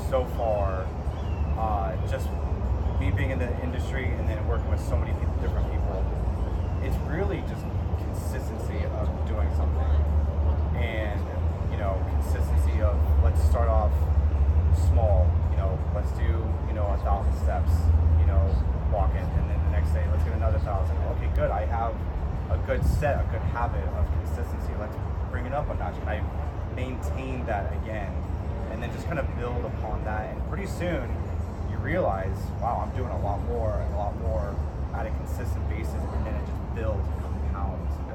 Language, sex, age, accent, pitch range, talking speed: English, male, 30-49, American, 75-90 Hz, 175 wpm